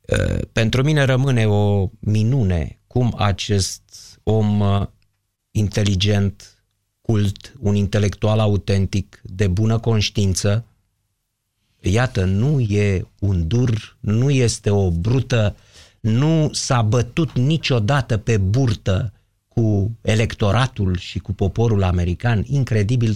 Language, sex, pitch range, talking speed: Romanian, male, 100-120 Hz, 100 wpm